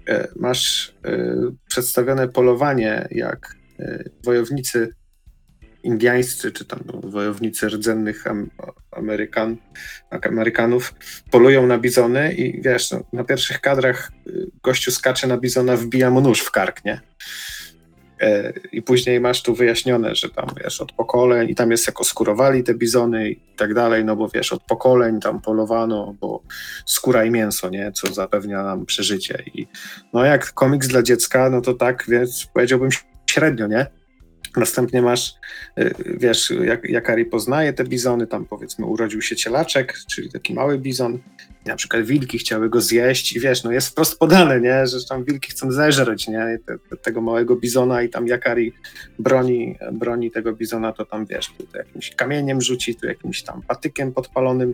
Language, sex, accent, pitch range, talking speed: Polish, male, native, 115-130 Hz, 160 wpm